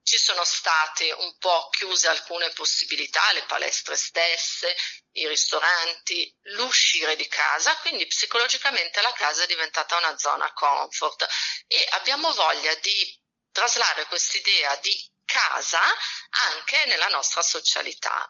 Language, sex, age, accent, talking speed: Italian, female, 30-49, native, 120 wpm